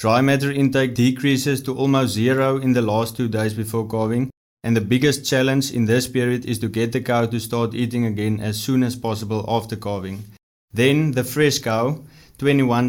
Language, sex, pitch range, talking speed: English, male, 115-130 Hz, 190 wpm